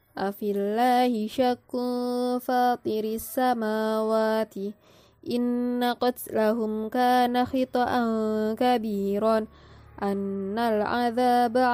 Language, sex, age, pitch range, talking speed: Indonesian, female, 20-39, 215-250 Hz, 60 wpm